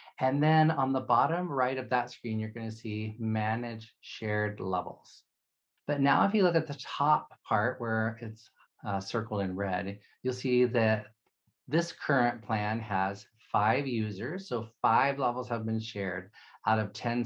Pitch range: 105-130 Hz